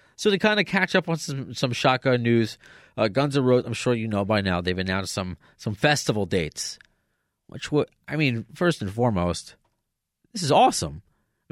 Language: English